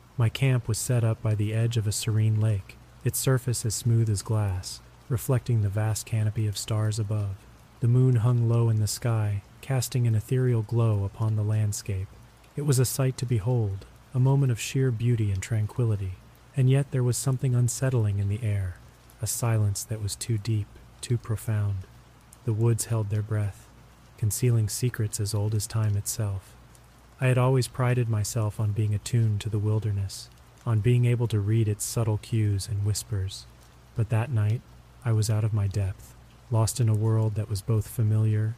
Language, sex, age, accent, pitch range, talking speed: English, male, 30-49, American, 105-120 Hz, 185 wpm